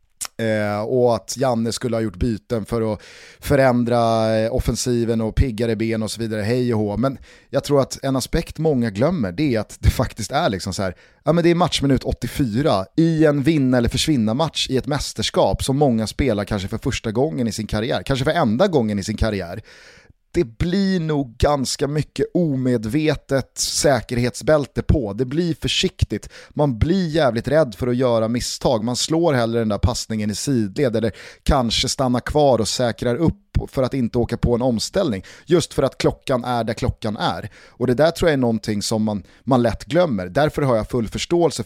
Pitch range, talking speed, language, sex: 110-140 Hz, 200 wpm, Swedish, male